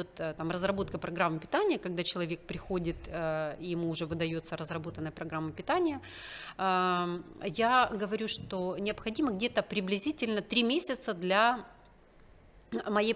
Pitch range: 175-230 Hz